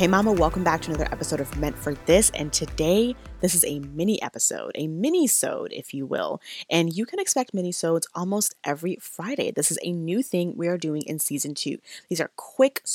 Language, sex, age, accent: English, female, 20-39, American